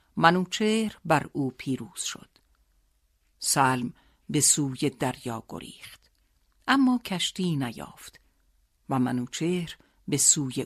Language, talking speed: Persian, 95 wpm